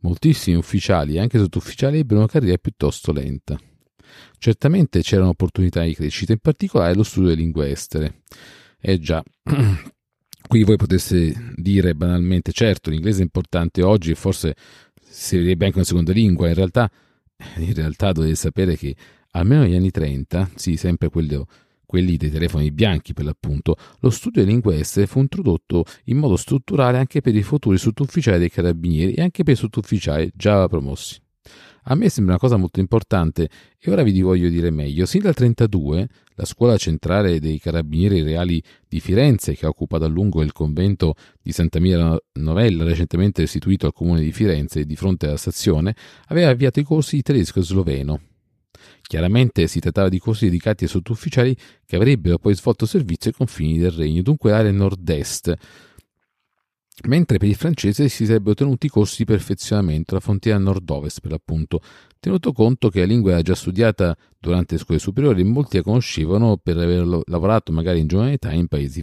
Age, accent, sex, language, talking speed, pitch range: 40-59, native, male, Italian, 175 wpm, 80-110 Hz